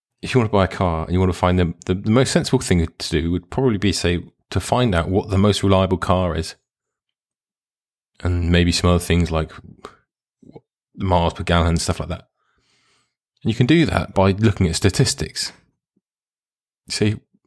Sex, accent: male, British